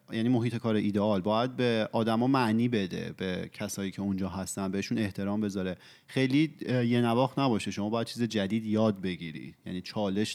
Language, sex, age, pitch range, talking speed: Persian, male, 30-49, 100-125 Hz, 175 wpm